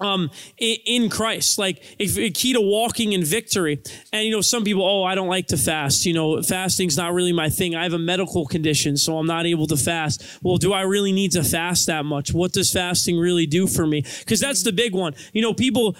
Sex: male